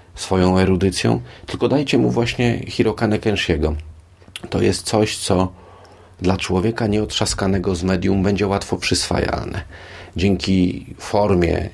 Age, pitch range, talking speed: 40-59, 85-95 Hz, 105 wpm